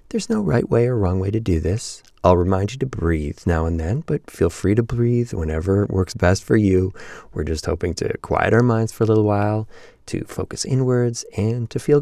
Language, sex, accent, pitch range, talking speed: English, male, American, 80-110 Hz, 230 wpm